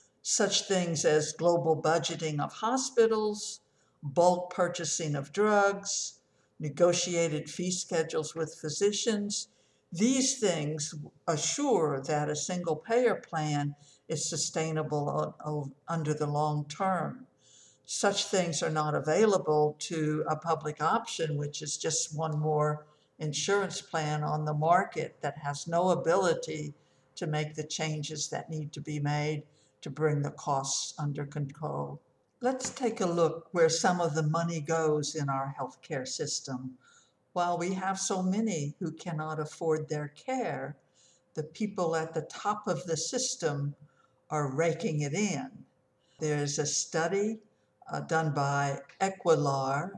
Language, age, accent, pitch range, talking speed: English, 60-79, American, 150-175 Hz, 135 wpm